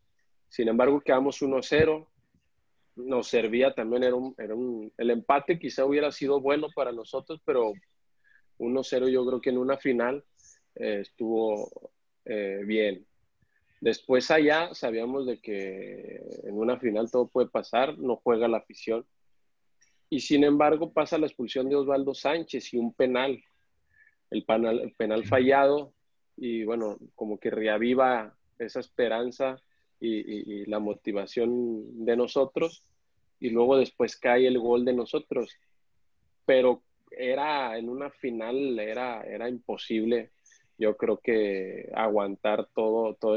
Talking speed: 135 wpm